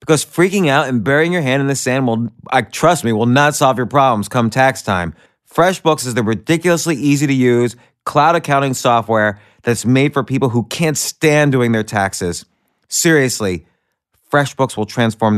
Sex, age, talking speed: male, 30-49, 180 wpm